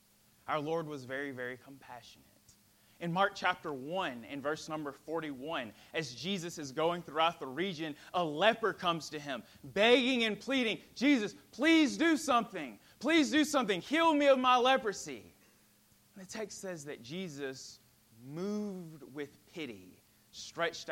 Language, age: English, 20-39